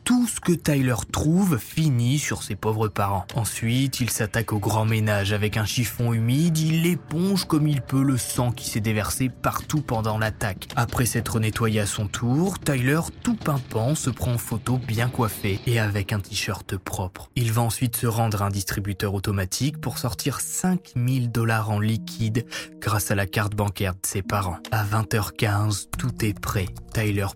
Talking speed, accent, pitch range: 180 wpm, French, 110-150 Hz